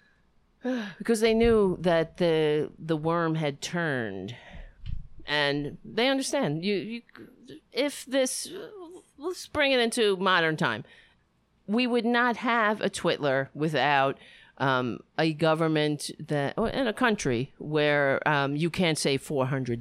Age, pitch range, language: 50-69, 155-250 Hz, English